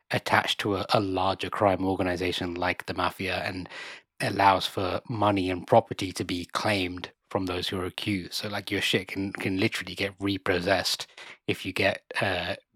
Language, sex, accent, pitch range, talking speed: English, male, British, 95-115 Hz, 175 wpm